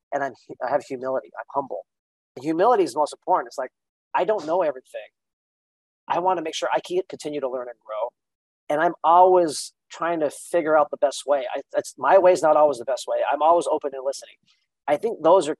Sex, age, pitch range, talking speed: male, 40-59, 140-180 Hz, 225 wpm